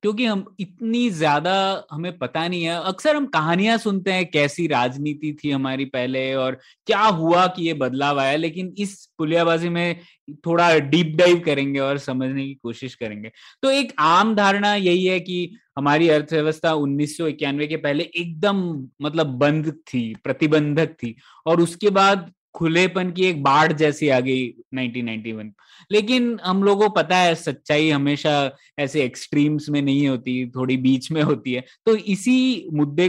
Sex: male